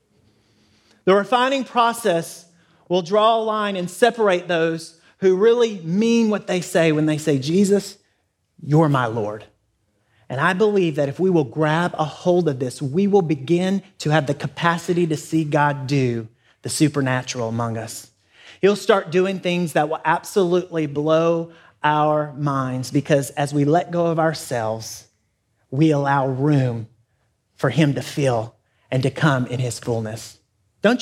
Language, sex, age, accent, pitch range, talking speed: English, male, 30-49, American, 135-180 Hz, 155 wpm